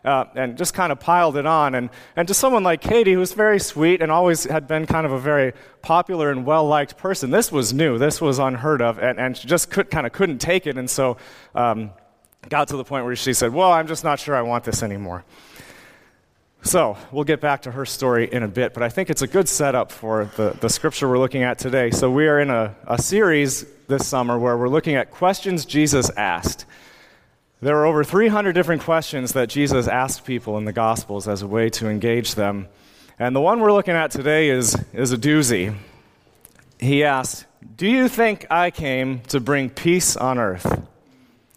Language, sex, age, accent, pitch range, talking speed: English, male, 30-49, American, 125-160 Hz, 215 wpm